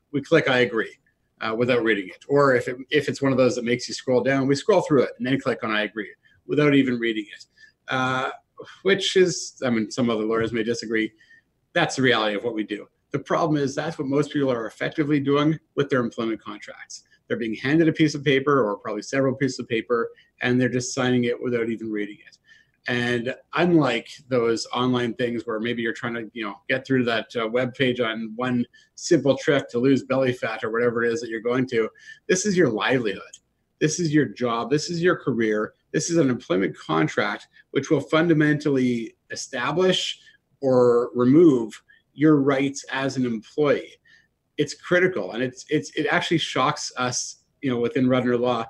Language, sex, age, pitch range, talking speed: English, male, 30-49, 120-150 Hz, 200 wpm